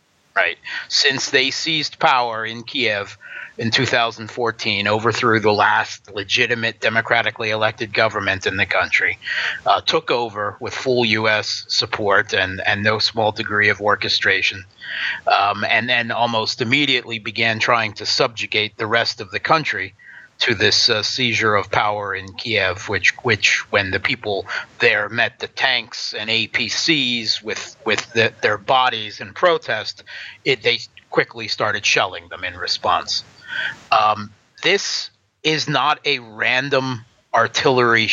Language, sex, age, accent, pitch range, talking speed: English, male, 30-49, American, 110-130 Hz, 135 wpm